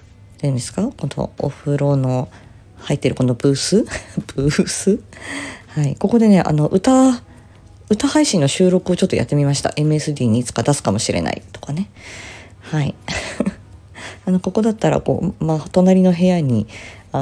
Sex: female